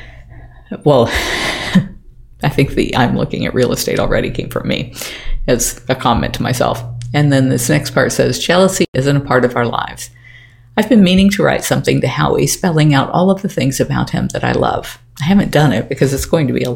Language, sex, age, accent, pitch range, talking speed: English, female, 50-69, American, 125-160 Hz, 215 wpm